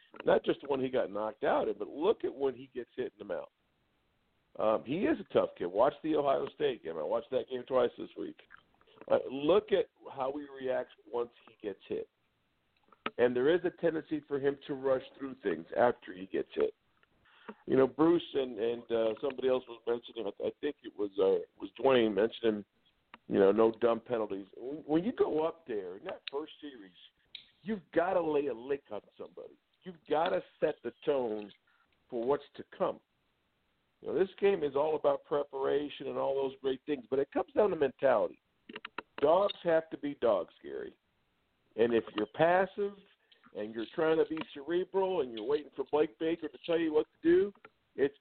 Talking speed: 195 wpm